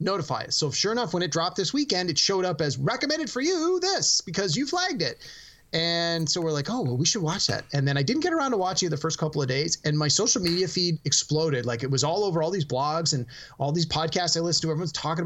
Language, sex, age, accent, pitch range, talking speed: English, male, 30-49, American, 145-190 Hz, 270 wpm